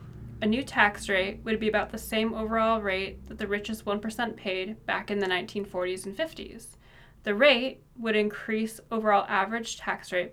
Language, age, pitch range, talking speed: English, 20-39, 200-230 Hz, 175 wpm